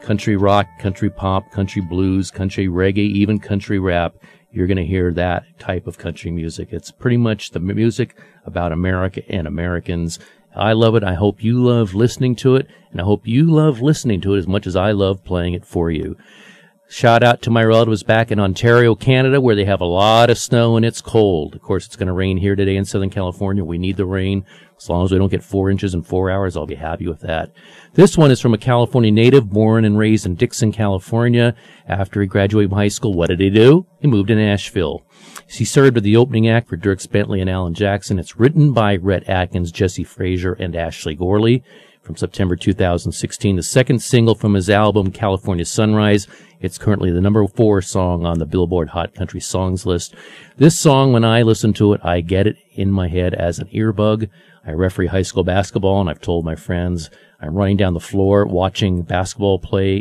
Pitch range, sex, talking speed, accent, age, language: 90-115 Hz, male, 215 wpm, American, 40-59, English